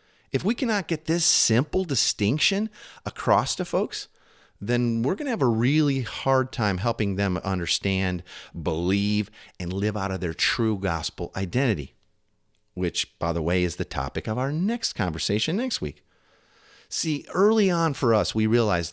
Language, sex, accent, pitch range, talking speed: English, male, American, 95-130 Hz, 160 wpm